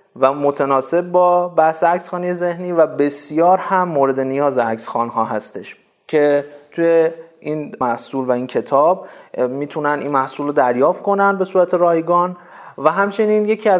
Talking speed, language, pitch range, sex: 140 wpm, Persian, 140-185 Hz, male